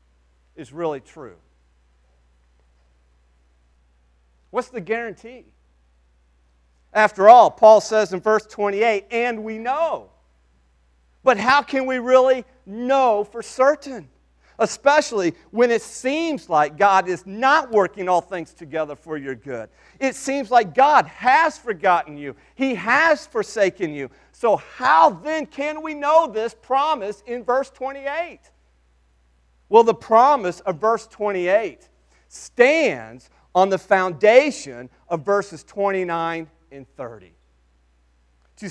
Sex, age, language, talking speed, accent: male, 40-59, English, 120 wpm, American